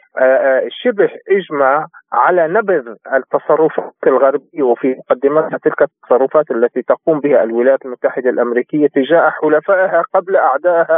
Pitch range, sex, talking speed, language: 135-175 Hz, male, 110 wpm, Arabic